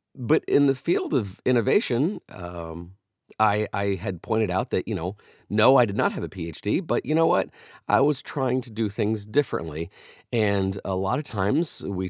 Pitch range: 95-135 Hz